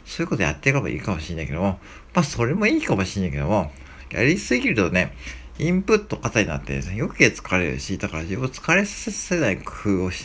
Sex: male